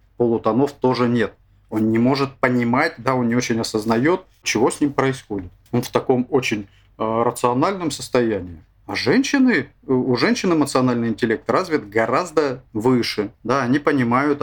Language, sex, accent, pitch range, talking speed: Russian, male, native, 105-135 Hz, 145 wpm